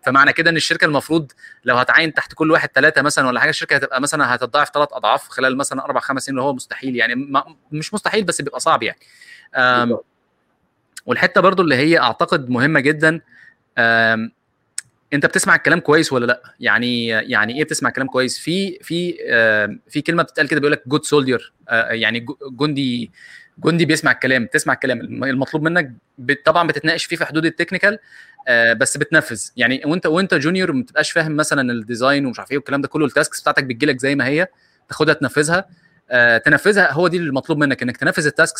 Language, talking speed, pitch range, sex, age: Arabic, 175 wpm, 130-165 Hz, male, 20-39